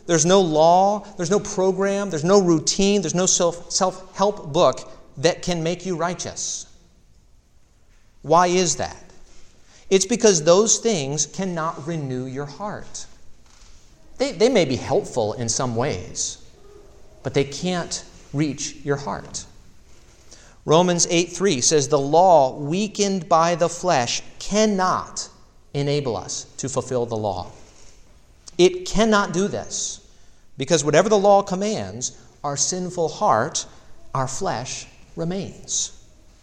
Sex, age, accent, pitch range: male, 40-59, American, 125-185 Hz